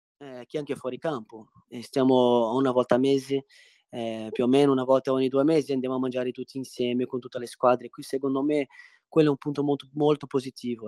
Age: 20-39